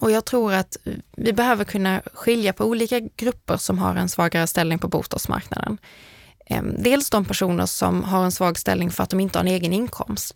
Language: Swedish